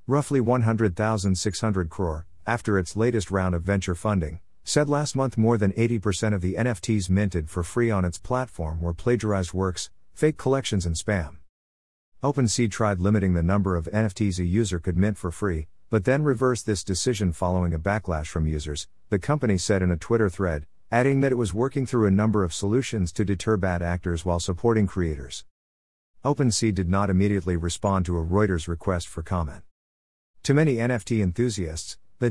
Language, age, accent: English, 50-69, American